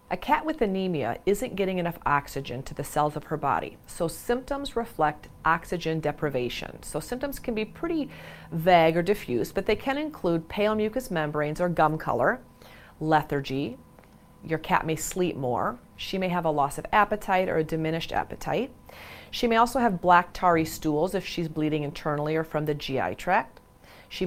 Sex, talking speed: female, 175 wpm